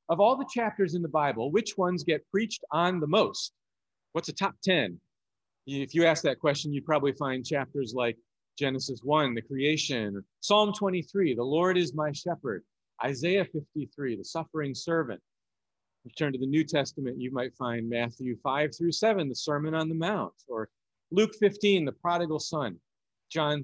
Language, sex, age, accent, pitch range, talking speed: English, male, 40-59, American, 130-175 Hz, 180 wpm